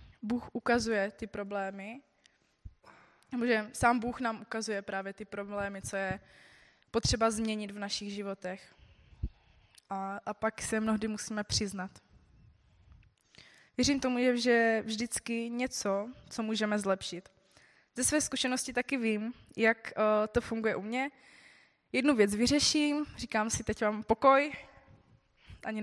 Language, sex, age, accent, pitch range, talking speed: Czech, female, 20-39, native, 200-235 Hz, 130 wpm